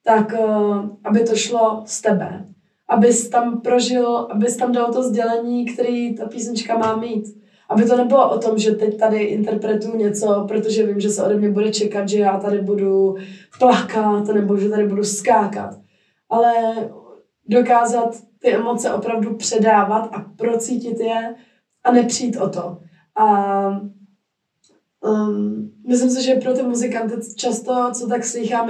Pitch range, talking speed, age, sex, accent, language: 205-235 Hz, 155 wpm, 20-39, female, native, Czech